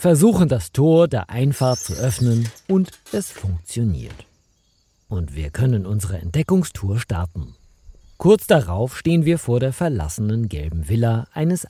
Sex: male